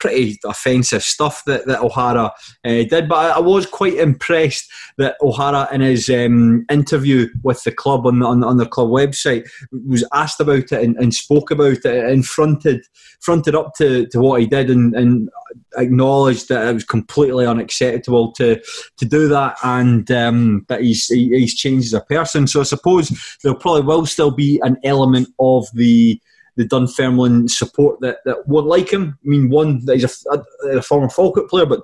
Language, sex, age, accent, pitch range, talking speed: English, male, 20-39, British, 120-145 Hz, 195 wpm